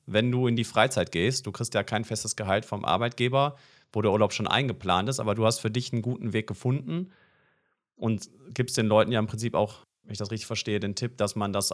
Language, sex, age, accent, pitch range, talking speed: German, male, 40-59, German, 100-125 Hz, 240 wpm